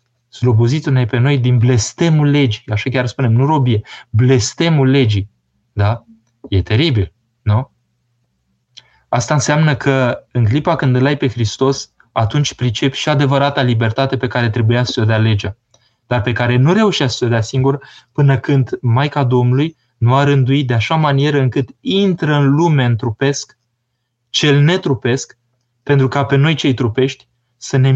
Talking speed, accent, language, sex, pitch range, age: 160 wpm, native, Romanian, male, 115-135 Hz, 20-39